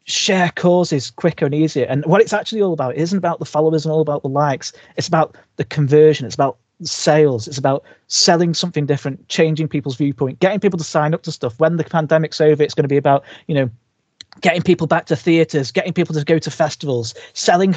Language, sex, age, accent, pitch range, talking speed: English, male, 30-49, British, 135-170 Hz, 220 wpm